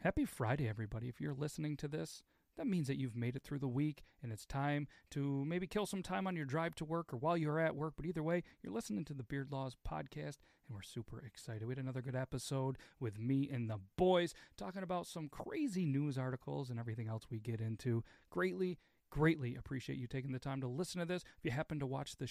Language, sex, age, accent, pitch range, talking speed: English, male, 40-59, American, 125-180 Hz, 235 wpm